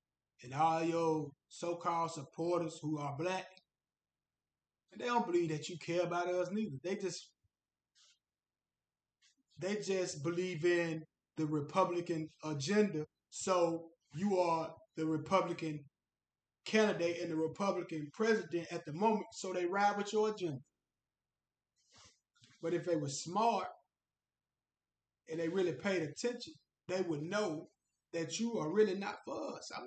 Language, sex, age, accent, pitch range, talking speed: English, male, 20-39, American, 160-210 Hz, 135 wpm